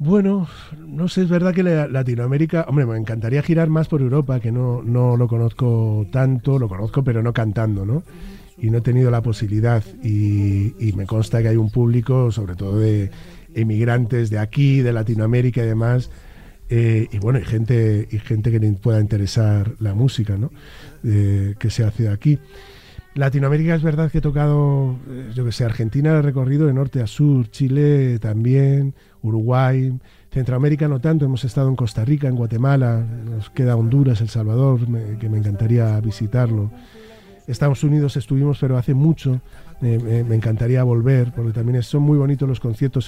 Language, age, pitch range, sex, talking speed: Spanish, 40-59, 115-140 Hz, male, 175 wpm